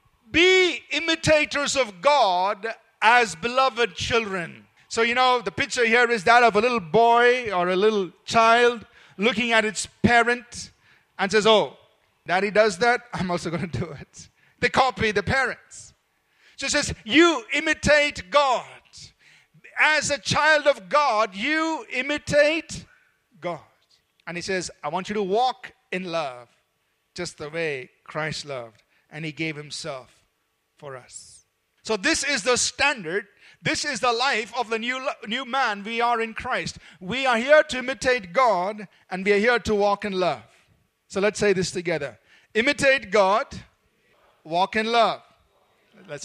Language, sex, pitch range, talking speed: English, male, 190-260 Hz, 155 wpm